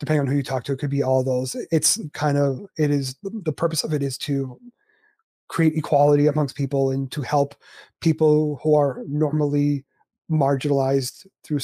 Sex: male